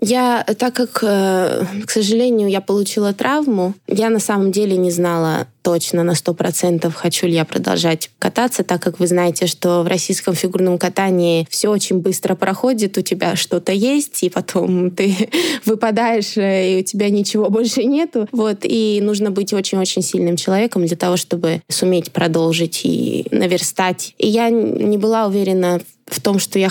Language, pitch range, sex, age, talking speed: Russian, 180-220 Hz, female, 20-39, 165 wpm